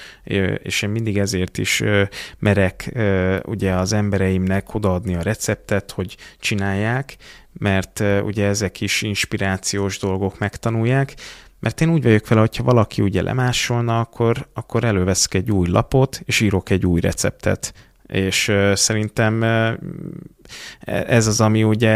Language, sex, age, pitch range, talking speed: Hungarian, male, 30-49, 100-120 Hz, 135 wpm